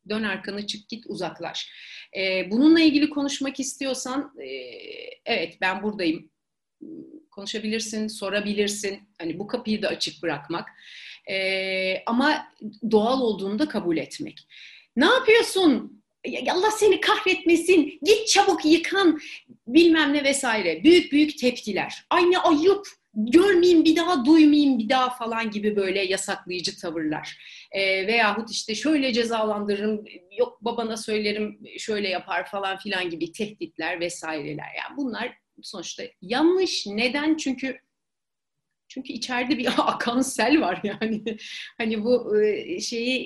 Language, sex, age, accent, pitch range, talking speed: Turkish, female, 40-59, native, 205-315 Hz, 115 wpm